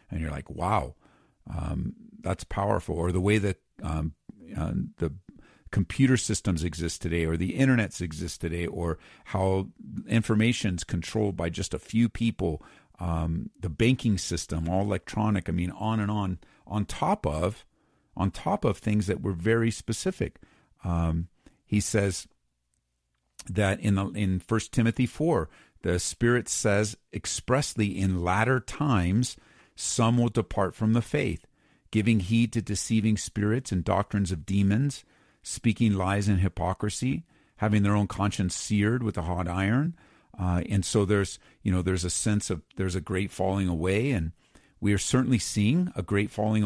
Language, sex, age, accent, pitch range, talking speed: English, male, 50-69, American, 90-110 Hz, 155 wpm